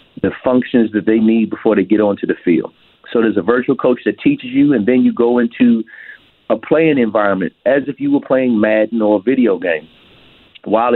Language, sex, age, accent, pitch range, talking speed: English, male, 40-59, American, 110-130 Hz, 210 wpm